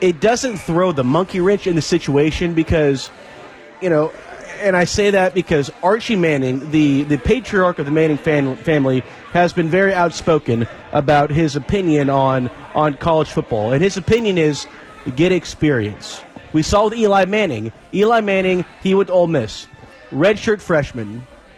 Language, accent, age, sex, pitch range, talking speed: English, American, 30-49, male, 145-185 Hz, 160 wpm